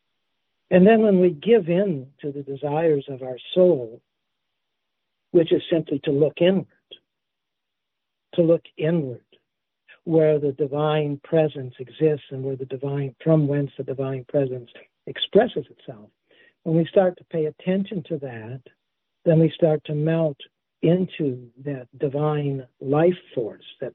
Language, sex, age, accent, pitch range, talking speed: English, male, 60-79, American, 140-170 Hz, 140 wpm